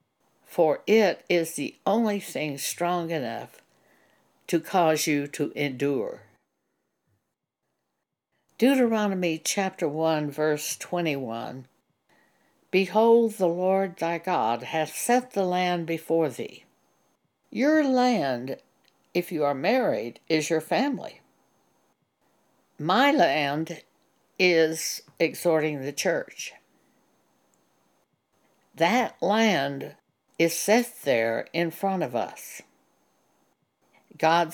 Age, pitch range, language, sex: 60-79, 150-200 Hz, English, female